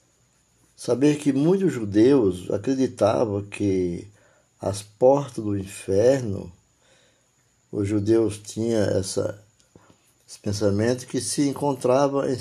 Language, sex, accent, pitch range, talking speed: Portuguese, male, Brazilian, 100-130 Hz, 90 wpm